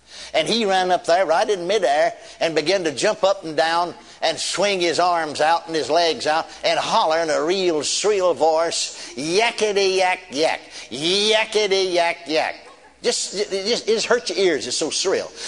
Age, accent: 60-79, American